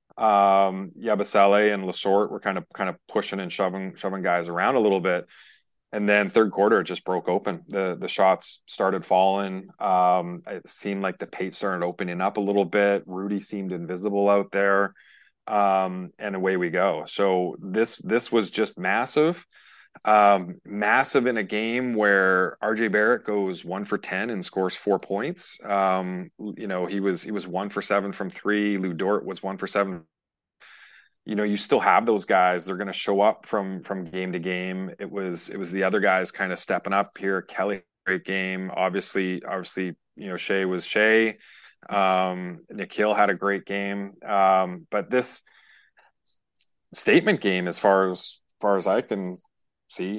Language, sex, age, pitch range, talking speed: English, male, 30-49, 95-100 Hz, 180 wpm